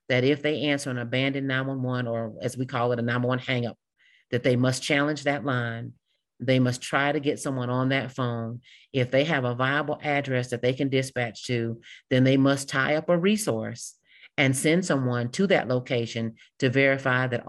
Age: 40-59